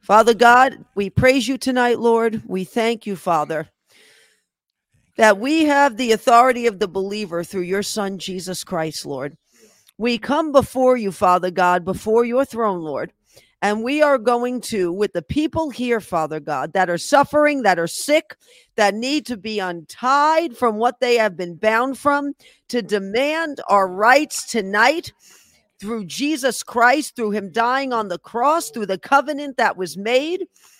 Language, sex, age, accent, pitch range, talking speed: English, female, 40-59, American, 200-275 Hz, 165 wpm